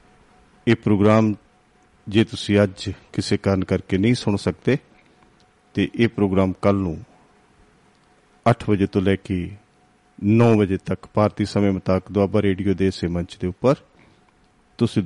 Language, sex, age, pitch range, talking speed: Punjabi, male, 50-69, 95-105 Hz, 140 wpm